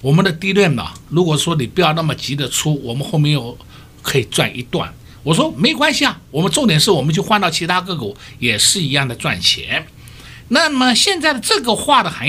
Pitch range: 125-200 Hz